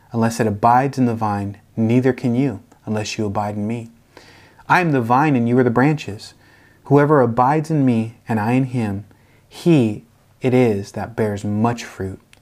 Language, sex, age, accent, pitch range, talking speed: English, male, 30-49, American, 105-130 Hz, 185 wpm